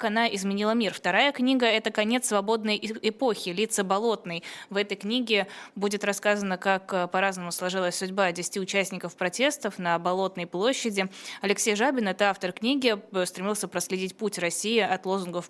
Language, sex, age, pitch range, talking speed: Russian, female, 20-39, 180-225 Hz, 150 wpm